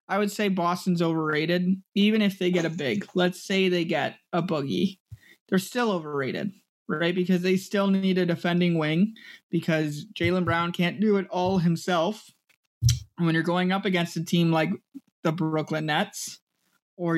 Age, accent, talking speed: 20-39, American, 170 wpm